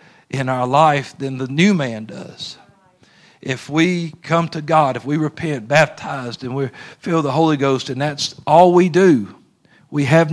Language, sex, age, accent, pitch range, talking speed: English, male, 50-69, American, 150-180 Hz, 175 wpm